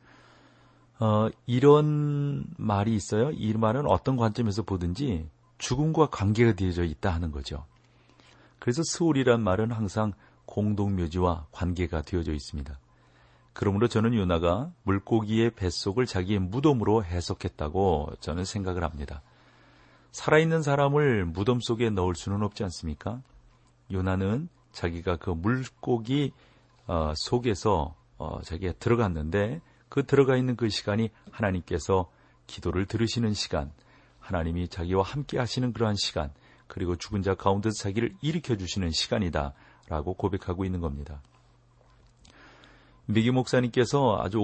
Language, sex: Korean, male